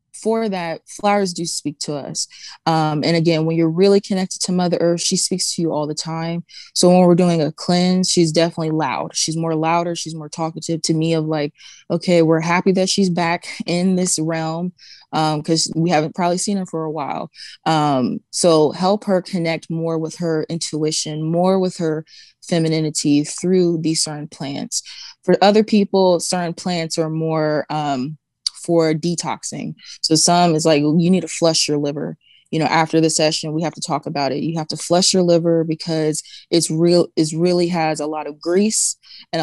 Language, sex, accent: English, female, American